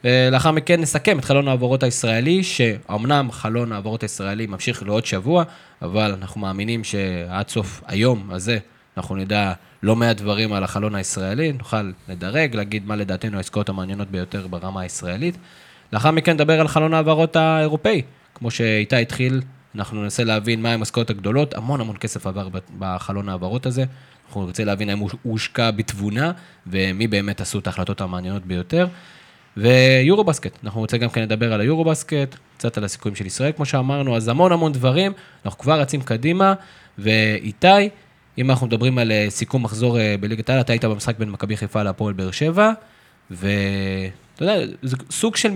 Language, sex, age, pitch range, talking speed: Hebrew, male, 20-39, 105-150 Hz, 155 wpm